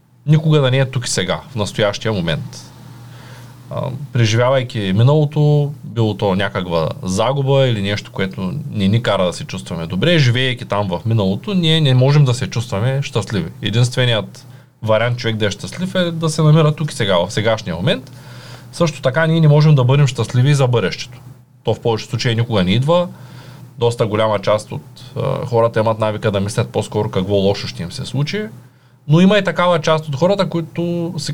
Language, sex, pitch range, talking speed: Bulgarian, male, 110-140 Hz, 190 wpm